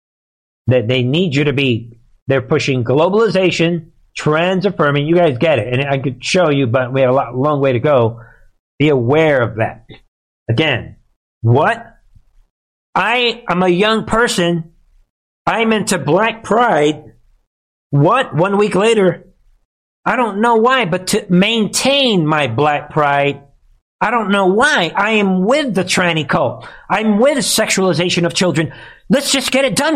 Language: English